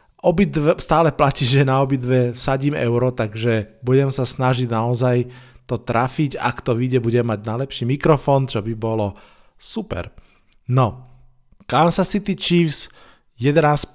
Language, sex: Slovak, male